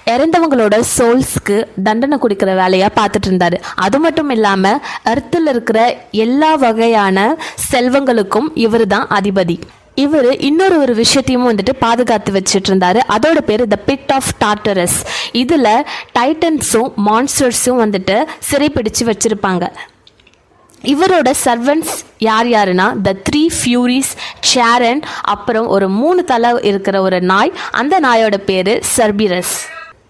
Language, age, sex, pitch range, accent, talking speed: Tamil, 20-39, female, 210-270 Hz, native, 110 wpm